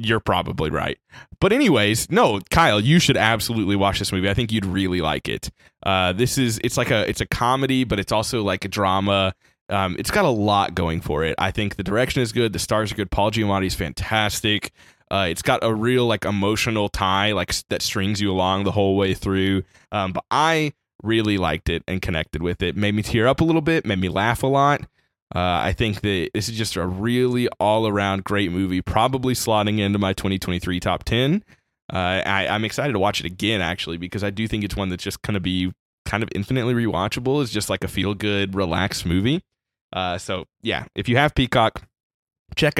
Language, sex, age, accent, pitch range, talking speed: English, male, 20-39, American, 95-120 Hz, 215 wpm